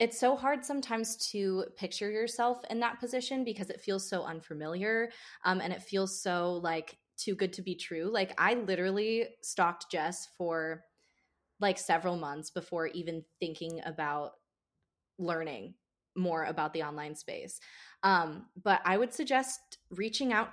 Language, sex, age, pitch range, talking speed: English, female, 20-39, 165-210 Hz, 150 wpm